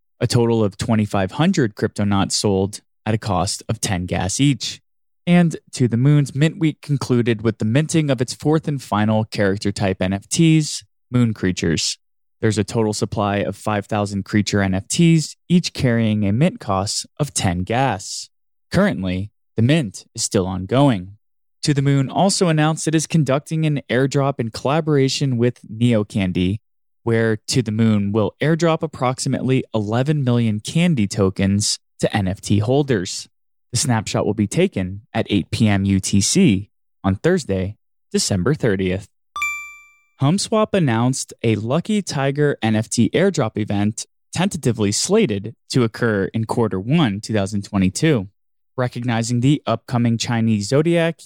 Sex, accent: male, American